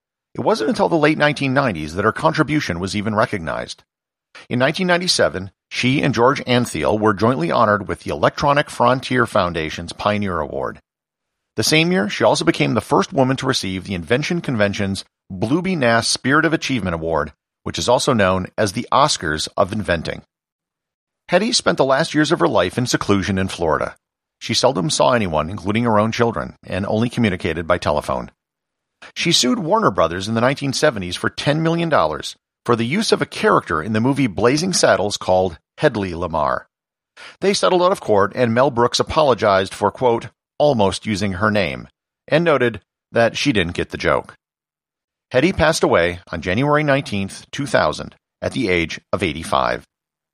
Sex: male